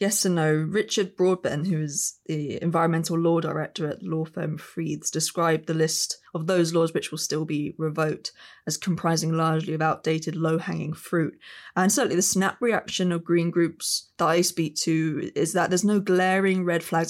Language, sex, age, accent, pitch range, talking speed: English, female, 20-39, British, 160-185 Hz, 180 wpm